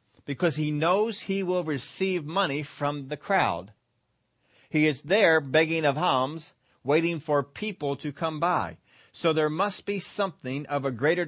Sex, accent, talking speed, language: male, American, 160 wpm, English